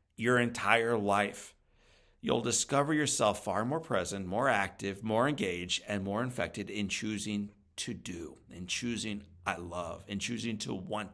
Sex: male